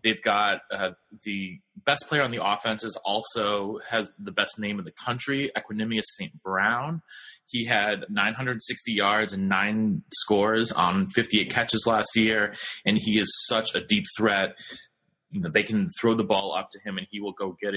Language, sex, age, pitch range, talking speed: English, male, 30-49, 105-130 Hz, 180 wpm